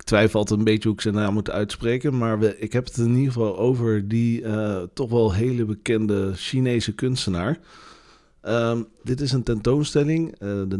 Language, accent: Dutch, Dutch